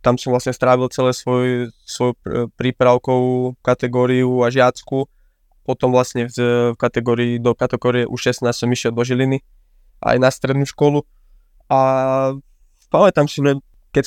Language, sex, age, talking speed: Slovak, male, 20-39, 130 wpm